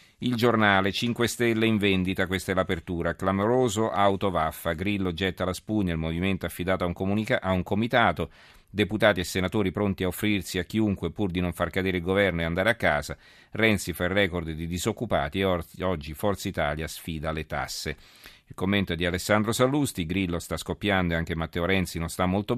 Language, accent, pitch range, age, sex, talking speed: Italian, native, 85-100 Hz, 40-59, male, 185 wpm